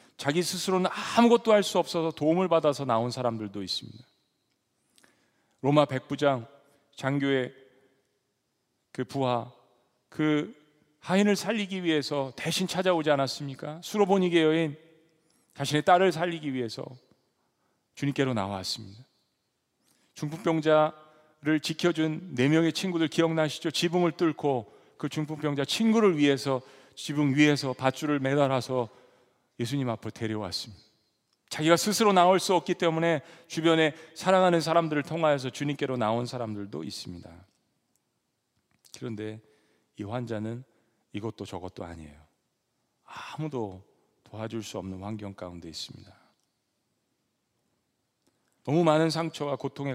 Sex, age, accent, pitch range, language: male, 40-59, native, 115-160 Hz, Korean